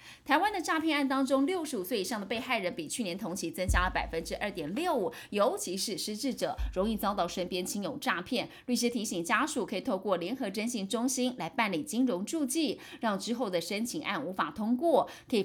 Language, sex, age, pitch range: Chinese, female, 30-49, 180-270 Hz